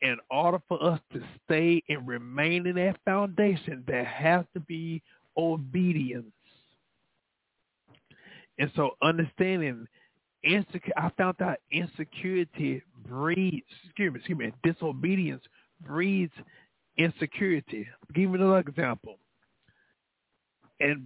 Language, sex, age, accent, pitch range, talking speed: English, male, 50-69, American, 130-170 Hz, 110 wpm